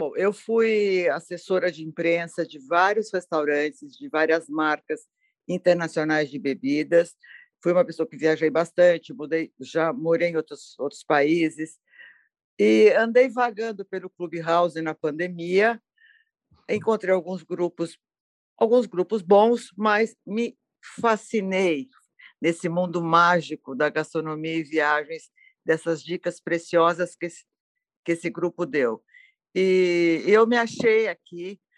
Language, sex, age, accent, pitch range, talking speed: Portuguese, female, 50-69, Brazilian, 160-200 Hz, 115 wpm